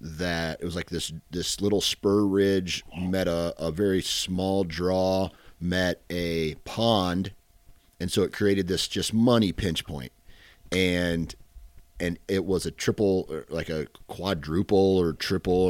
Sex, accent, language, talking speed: male, American, English, 145 wpm